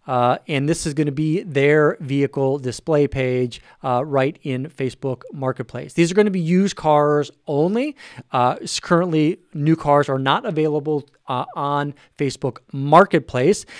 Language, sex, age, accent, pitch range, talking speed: English, male, 40-59, American, 135-160 Hz, 150 wpm